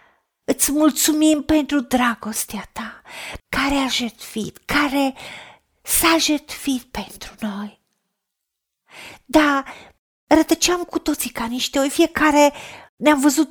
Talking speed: 100 wpm